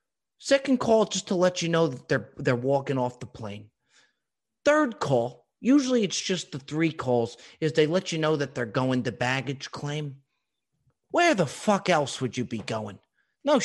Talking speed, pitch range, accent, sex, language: 185 wpm, 140-230 Hz, American, male, English